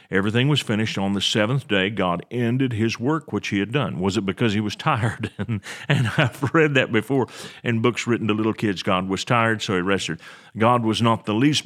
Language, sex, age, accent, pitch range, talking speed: English, male, 40-59, American, 100-125 Hz, 220 wpm